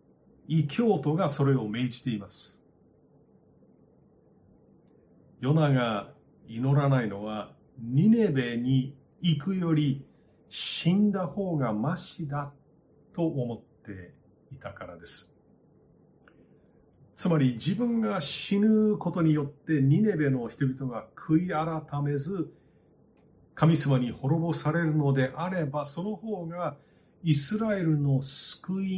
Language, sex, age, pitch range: Japanese, male, 40-59, 125-165 Hz